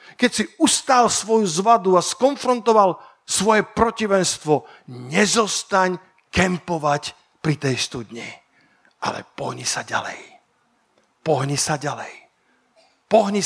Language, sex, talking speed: Slovak, male, 100 wpm